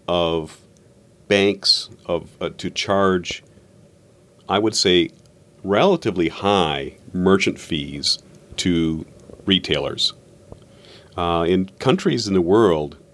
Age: 40-59